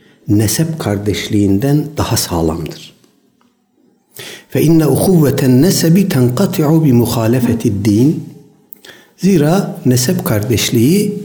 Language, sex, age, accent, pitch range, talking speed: Turkish, male, 60-79, native, 110-160 Hz, 80 wpm